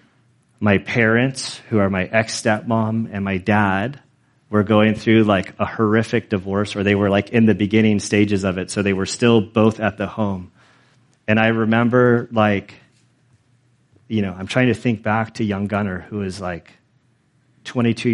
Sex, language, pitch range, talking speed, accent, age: male, English, 100-115 Hz, 170 wpm, American, 30-49